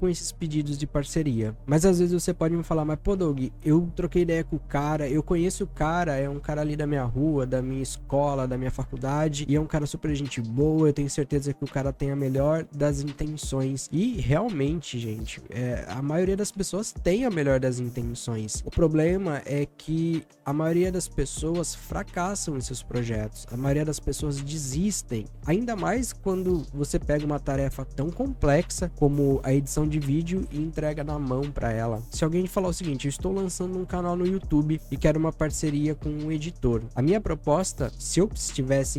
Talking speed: 205 wpm